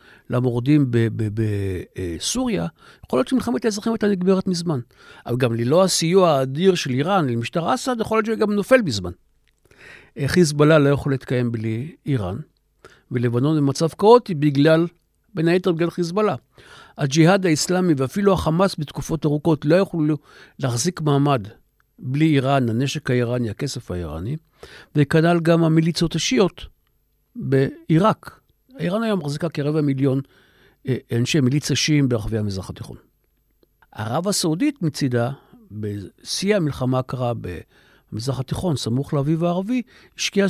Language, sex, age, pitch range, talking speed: Hebrew, male, 60-79, 125-175 Hz, 125 wpm